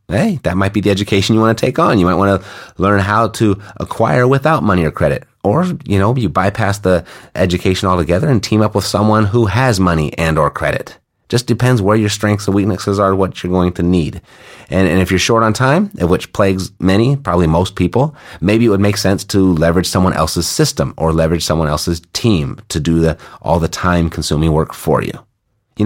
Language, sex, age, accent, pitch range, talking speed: English, male, 30-49, American, 85-110 Hz, 220 wpm